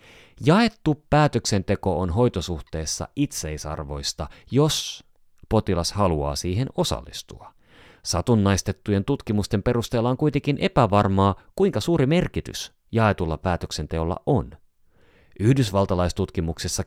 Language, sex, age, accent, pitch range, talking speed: Finnish, male, 30-49, native, 80-110 Hz, 80 wpm